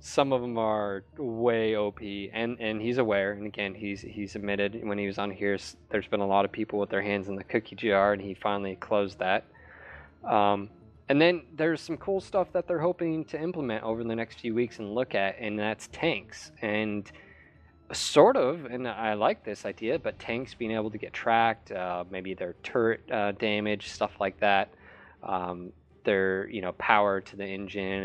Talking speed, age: 200 wpm, 20-39